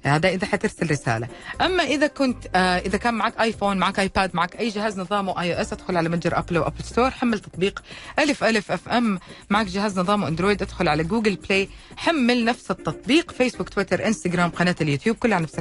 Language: Arabic